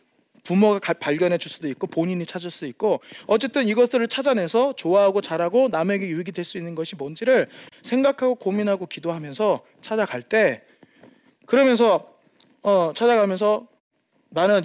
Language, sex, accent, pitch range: Korean, male, native, 170-235 Hz